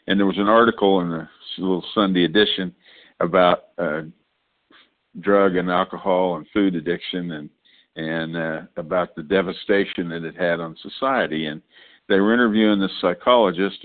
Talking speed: 155 wpm